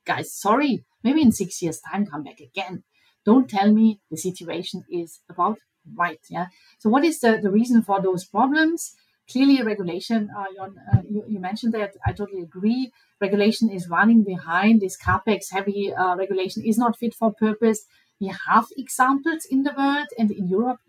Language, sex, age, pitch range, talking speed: English, female, 30-49, 190-235 Hz, 180 wpm